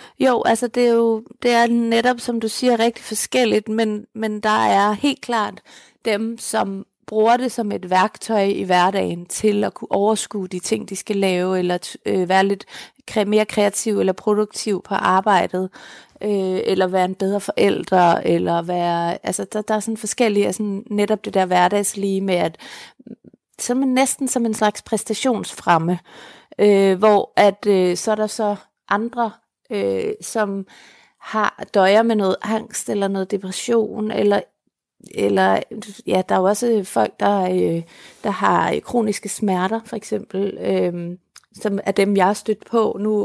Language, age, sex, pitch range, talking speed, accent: Danish, 30-49, female, 195-225 Hz, 170 wpm, native